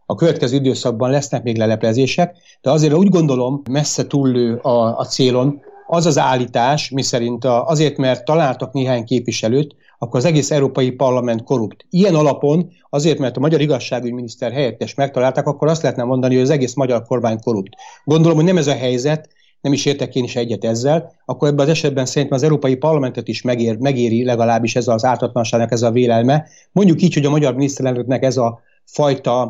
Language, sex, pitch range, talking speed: Hungarian, male, 120-155 Hz, 185 wpm